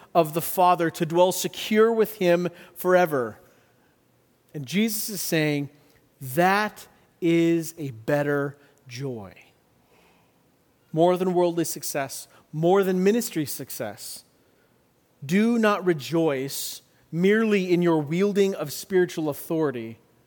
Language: English